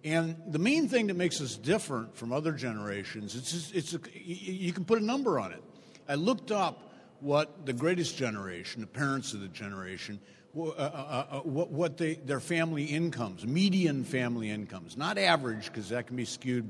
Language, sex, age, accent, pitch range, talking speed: English, male, 50-69, American, 120-170 Hz, 185 wpm